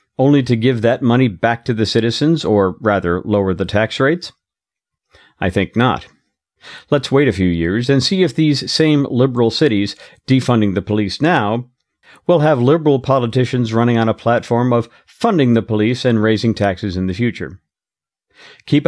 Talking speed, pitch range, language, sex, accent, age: 170 wpm, 110-160 Hz, English, male, American, 50-69